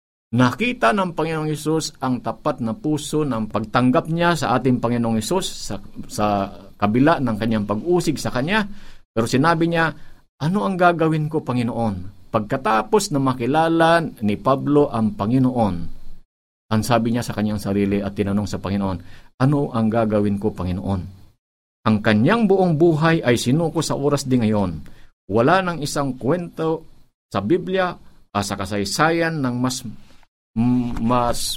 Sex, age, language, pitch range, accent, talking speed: male, 50-69, Filipino, 110-155 Hz, native, 145 wpm